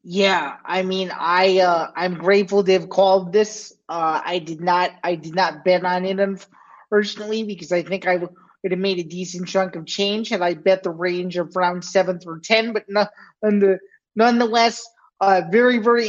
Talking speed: 195 wpm